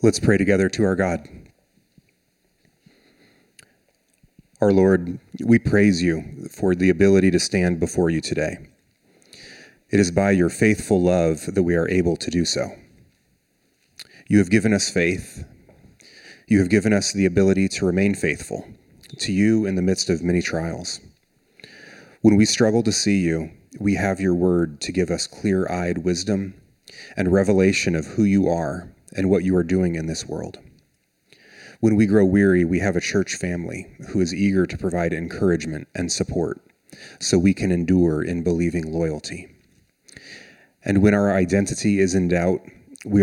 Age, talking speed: 30-49, 160 wpm